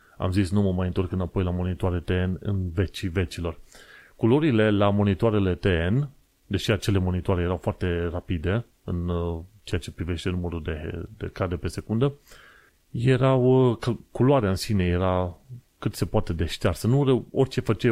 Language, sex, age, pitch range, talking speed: Romanian, male, 30-49, 90-110 Hz, 155 wpm